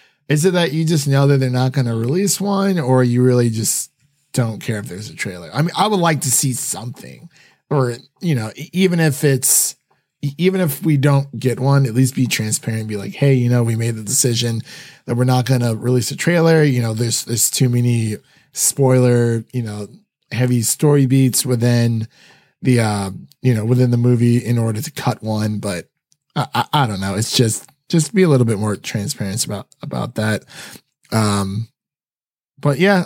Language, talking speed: English, 200 wpm